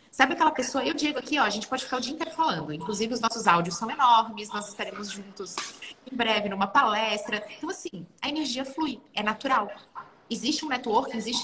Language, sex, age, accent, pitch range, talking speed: Portuguese, female, 30-49, Brazilian, 210-255 Hz, 205 wpm